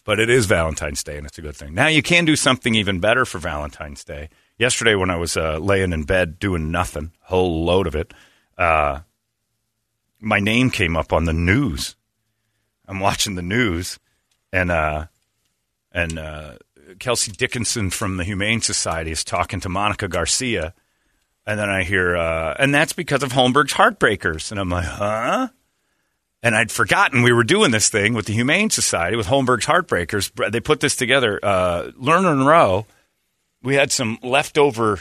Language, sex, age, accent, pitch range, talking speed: English, male, 40-59, American, 90-120 Hz, 175 wpm